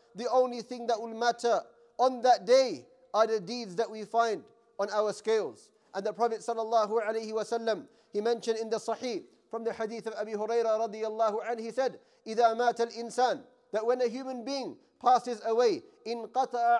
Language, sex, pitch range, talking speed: English, male, 230-270 Hz, 165 wpm